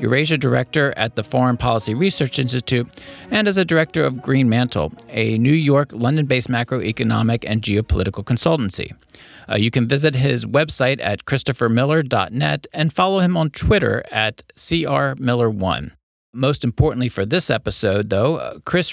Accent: American